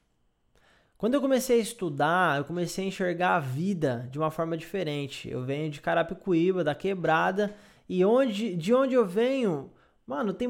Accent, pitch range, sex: Brazilian, 165-235 Hz, male